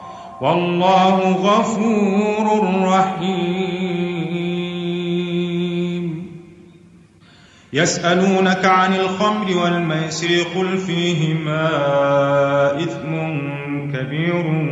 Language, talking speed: Arabic, 45 wpm